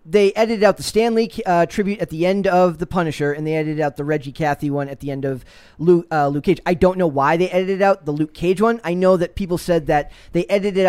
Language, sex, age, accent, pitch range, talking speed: English, male, 20-39, American, 155-200 Hz, 270 wpm